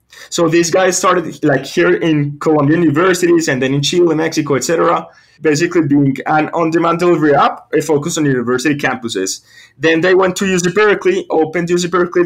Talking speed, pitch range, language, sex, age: 175 wpm, 145-175 Hz, English, male, 20-39